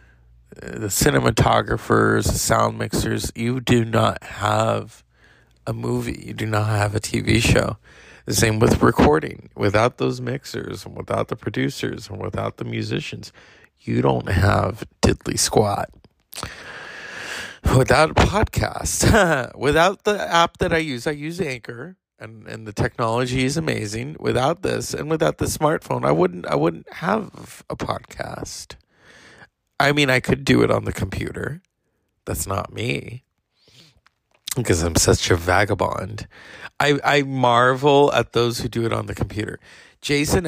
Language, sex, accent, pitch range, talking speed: English, male, American, 105-130 Hz, 145 wpm